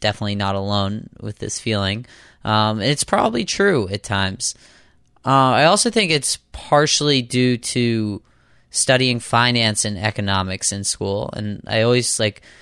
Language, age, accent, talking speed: English, 20-39, American, 150 wpm